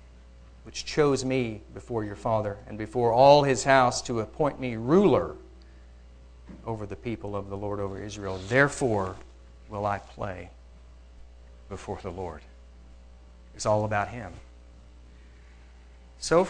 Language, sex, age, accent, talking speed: English, male, 50-69, American, 125 wpm